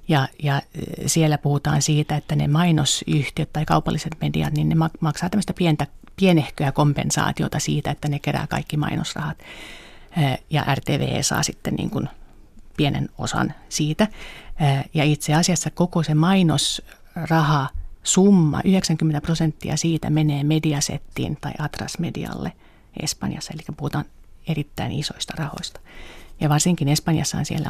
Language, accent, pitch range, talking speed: Finnish, native, 150-170 Hz, 125 wpm